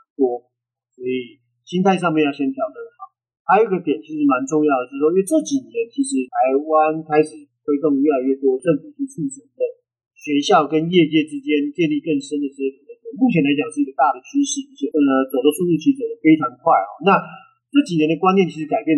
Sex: male